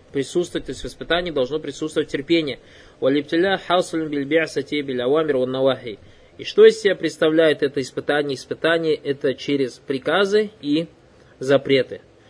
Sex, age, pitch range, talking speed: male, 20-39, 140-170 Hz, 110 wpm